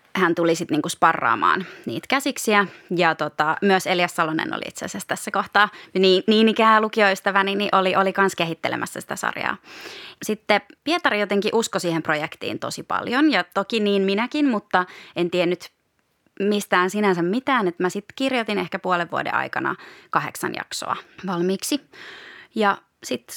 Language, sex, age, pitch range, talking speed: Finnish, female, 20-39, 180-225 Hz, 150 wpm